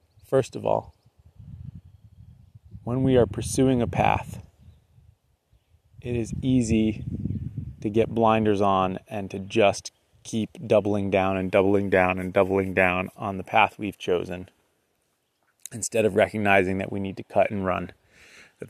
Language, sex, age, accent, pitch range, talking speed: English, male, 30-49, American, 95-110 Hz, 140 wpm